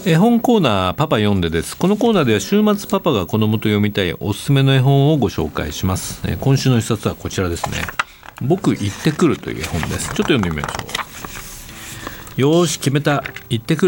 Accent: native